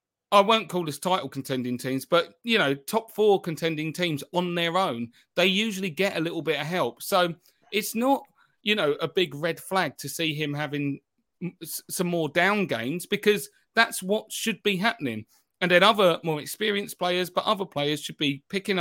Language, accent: English, British